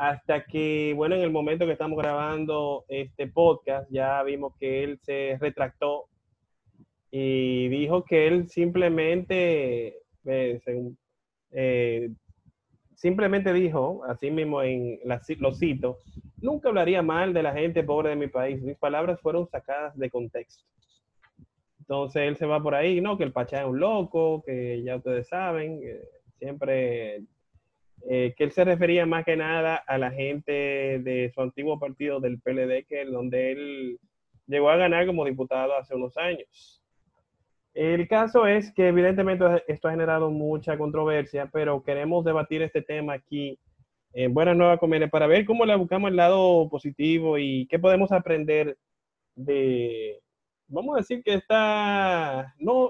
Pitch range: 135-175 Hz